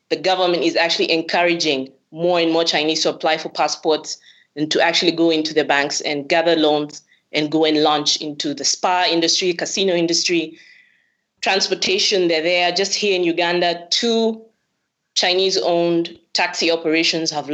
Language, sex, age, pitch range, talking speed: English, female, 20-39, 155-185 Hz, 155 wpm